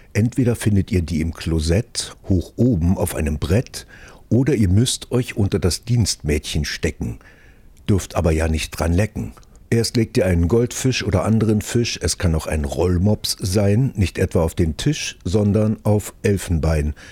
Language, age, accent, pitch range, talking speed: German, 60-79, German, 85-110 Hz, 165 wpm